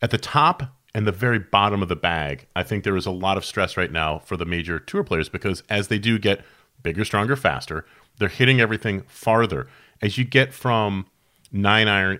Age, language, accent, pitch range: 30-49, English, American, 90-115 Hz